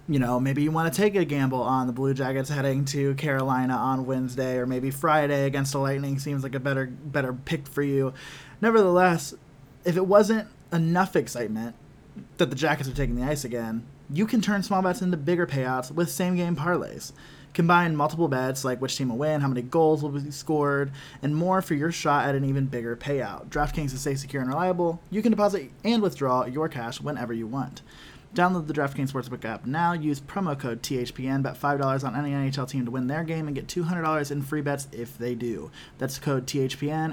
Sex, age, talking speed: male, 20-39, 210 wpm